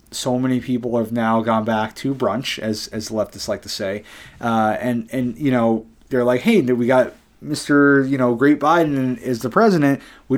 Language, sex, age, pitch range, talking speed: English, male, 30-49, 110-135 Hz, 195 wpm